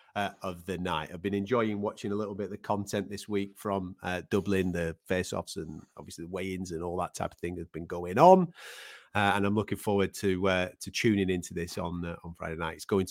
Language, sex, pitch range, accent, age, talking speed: English, male, 90-110 Hz, British, 30-49, 250 wpm